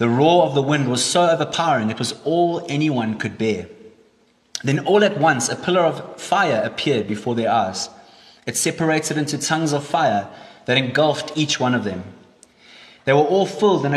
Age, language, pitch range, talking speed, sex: 30-49, English, 135-180 Hz, 185 wpm, male